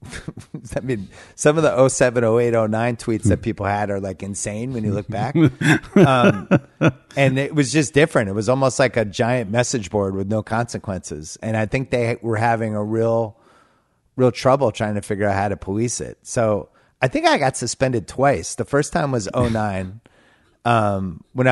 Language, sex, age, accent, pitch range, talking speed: English, male, 30-49, American, 105-135 Hz, 200 wpm